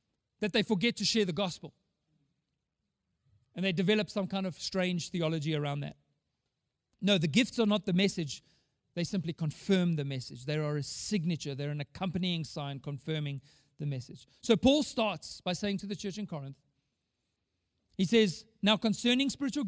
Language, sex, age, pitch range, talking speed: English, male, 40-59, 150-220 Hz, 170 wpm